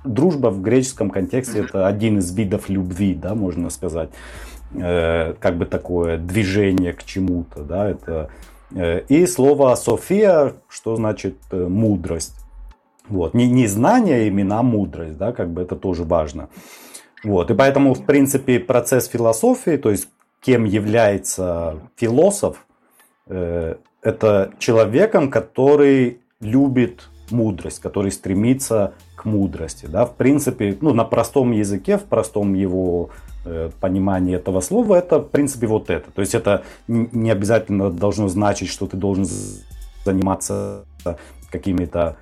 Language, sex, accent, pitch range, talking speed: Russian, male, native, 90-115 Hz, 135 wpm